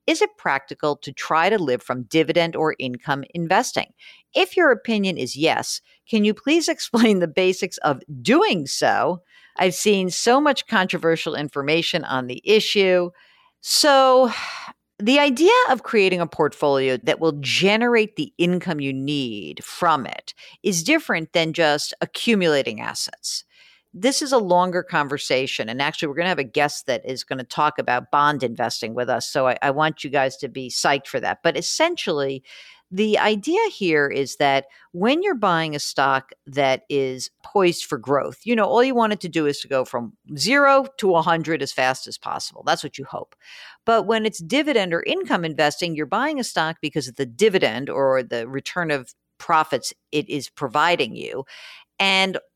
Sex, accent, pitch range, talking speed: female, American, 140-215 Hz, 180 wpm